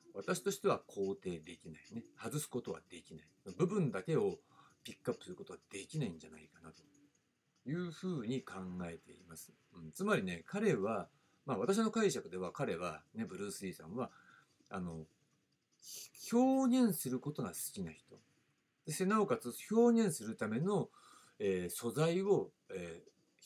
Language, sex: Japanese, male